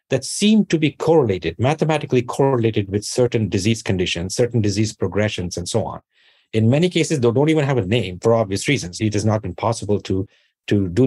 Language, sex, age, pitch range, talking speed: English, male, 50-69, 100-120 Hz, 200 wpm